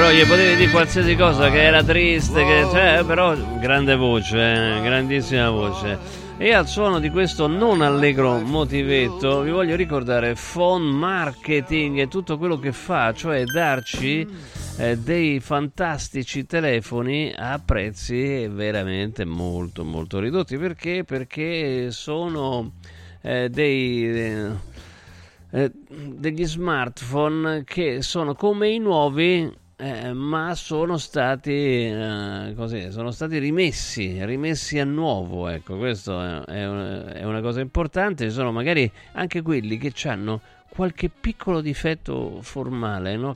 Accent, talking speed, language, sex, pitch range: native, 125 wpm, Italian, male, 105-155 Hz